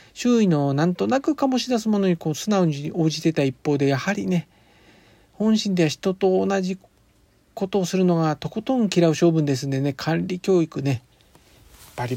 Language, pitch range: Japanese, 140-195 Hz